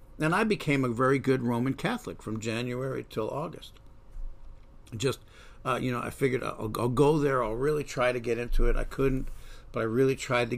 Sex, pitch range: male, 110-135 Hz